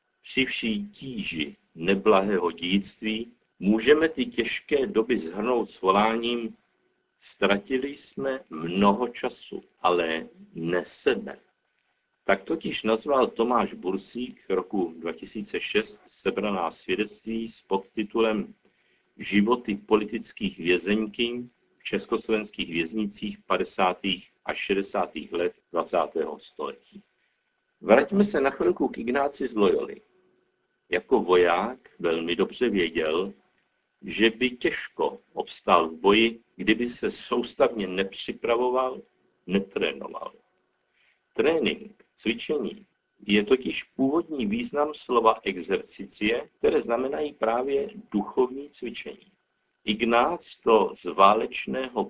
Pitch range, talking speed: 100-145 Hz, 95 wpm